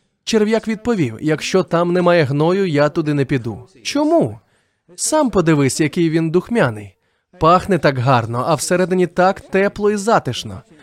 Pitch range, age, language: 135-195 Hz, 20-39, Ukrainian